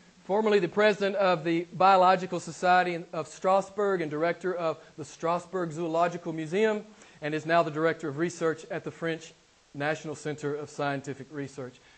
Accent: American